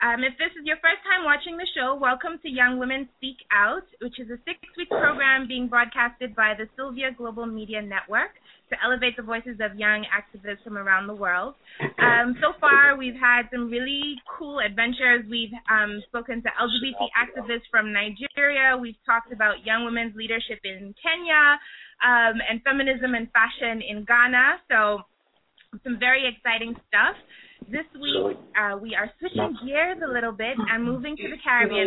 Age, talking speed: 20-39, 175 wpm